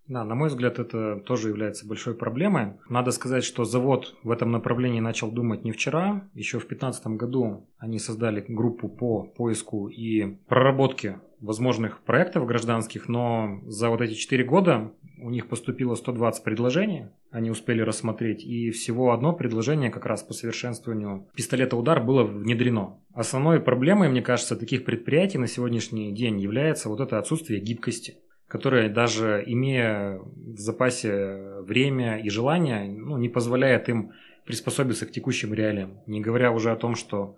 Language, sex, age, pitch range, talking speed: Russian, male, 30-49, 110-125 Hz, 155 wpm